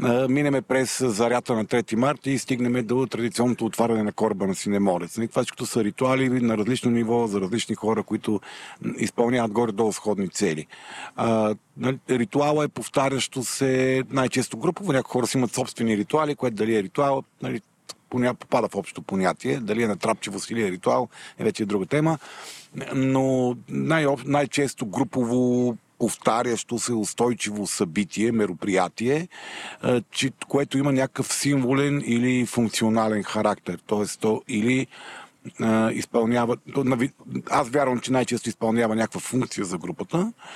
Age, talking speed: 50-69, 135 wpm